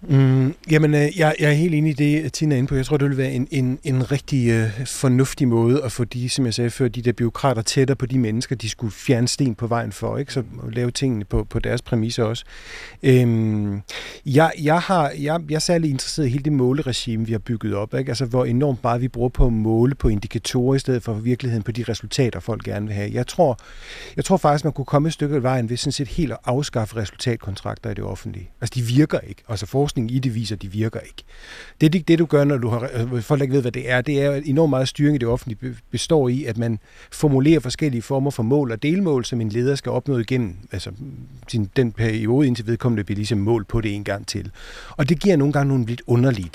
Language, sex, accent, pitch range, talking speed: Danish, male, native, 115-140 Hz, 250 wpm